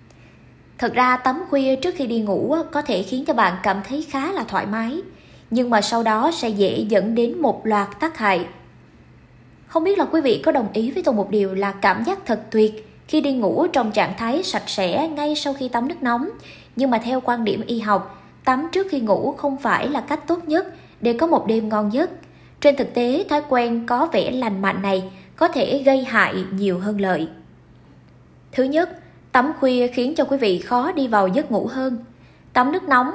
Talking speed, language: 215 wpm, Vietnamese